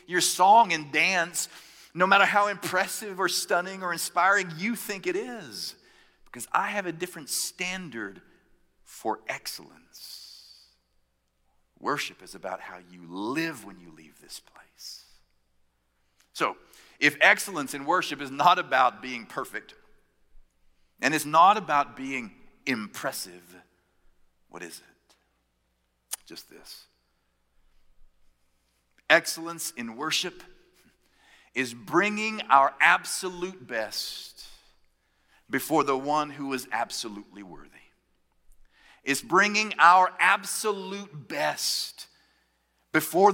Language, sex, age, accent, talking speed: English, male, 50-69, American, 105 wpm